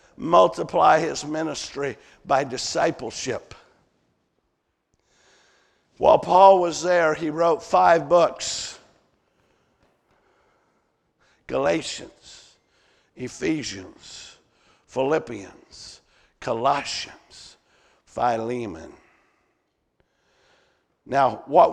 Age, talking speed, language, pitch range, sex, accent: 50-69, 55 wpm, English, 150-185 Hz, male, American